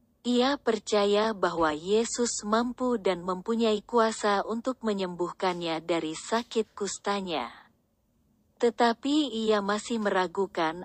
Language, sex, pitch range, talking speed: Indonesian, female, 180-230 Hz, 95 wpm